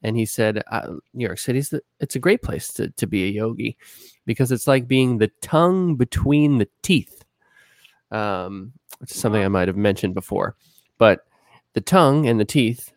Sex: male